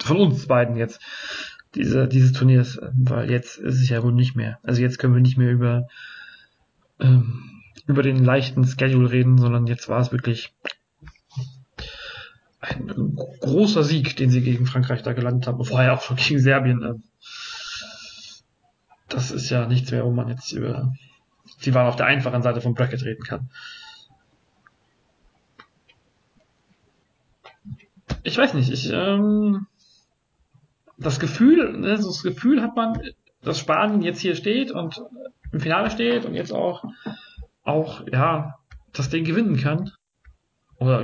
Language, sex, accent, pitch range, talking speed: German, male, German, 125-160 Hz, 140 wpm